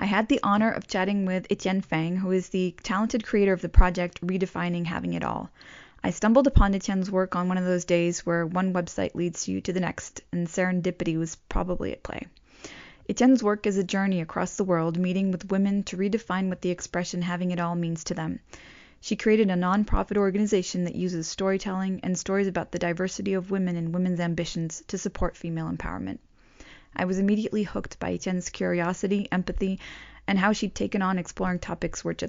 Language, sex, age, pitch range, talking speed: French, female, 20-39, 175-200 Hz, 195 wpm